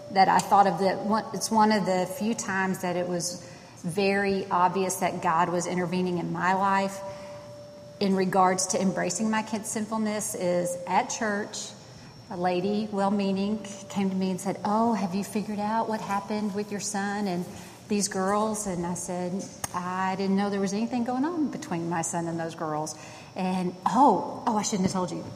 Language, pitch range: English, 180-210 Hz